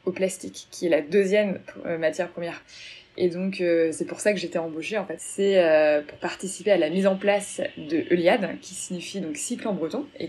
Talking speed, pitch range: 225 wpm, 165-195 Hz